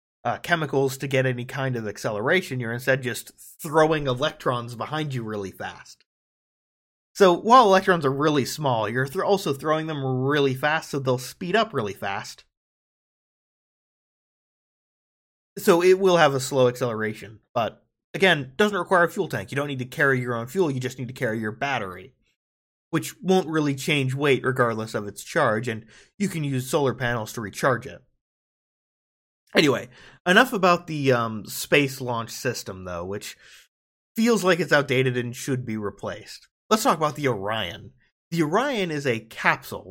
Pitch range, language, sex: 120-160 Hz, English, male